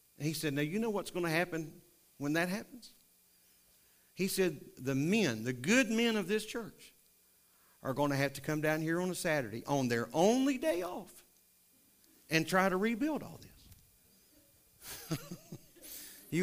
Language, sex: English, male